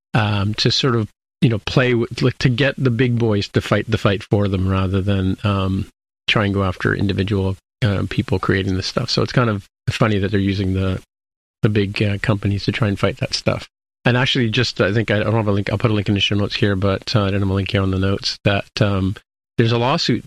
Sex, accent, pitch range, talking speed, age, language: male, American, 100-115 Hz, 260 wpm, 40-59, English